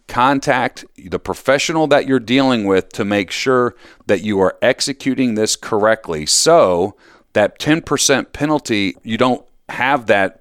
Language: English